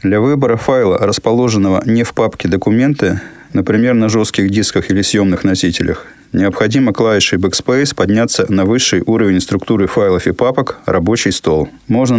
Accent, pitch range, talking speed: native, 100-120 Hz, 145 wpm